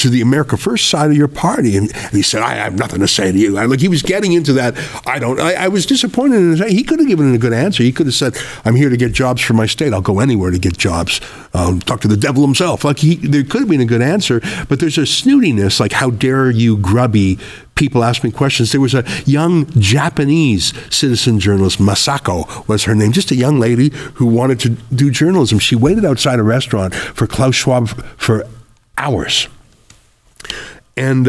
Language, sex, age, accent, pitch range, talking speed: English, male, 50-69, American, 115-155 Hz, 230 wpm